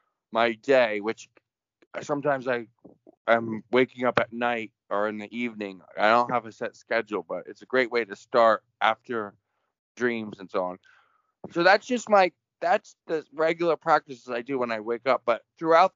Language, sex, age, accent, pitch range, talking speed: English, male, 20-39, American, 120-160 Hz, 180 wpm